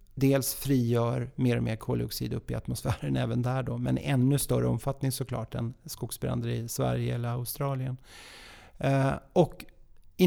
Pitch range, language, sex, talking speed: 120-155 Hz, Swedish, male, 145 wpm